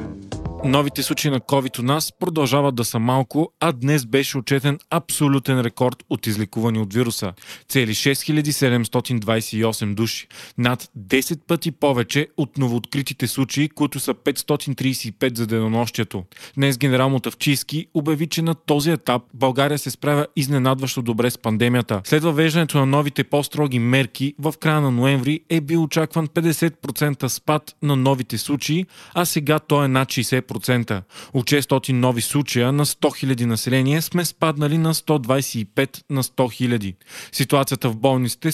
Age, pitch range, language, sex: 30-49, 125-155 Hz, Bulgarian, male